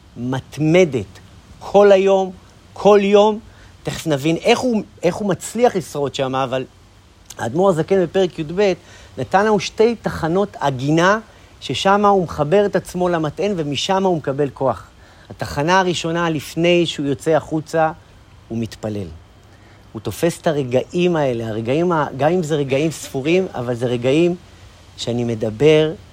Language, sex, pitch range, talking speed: Hebrew, male, 115-175 Hz, 135 wpm